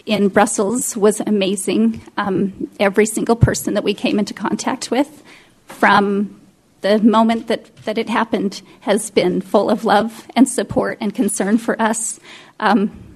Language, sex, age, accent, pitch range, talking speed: English, female, 30-49, American, 220-270 Hz, 150 wpm